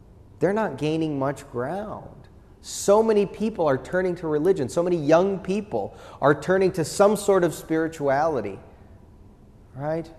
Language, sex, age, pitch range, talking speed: English, male, 30-49, 110-165 Hz, 140 wpm